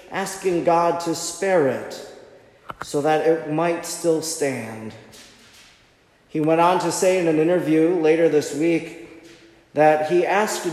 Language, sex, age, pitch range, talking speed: English, male, 40-59, 145-180 Hz, 140 wpm